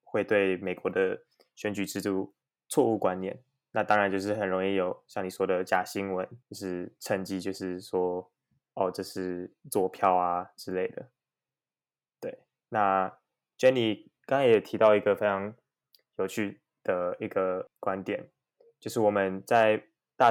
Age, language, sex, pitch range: 20-39, Chinese, male, 95-105 Hz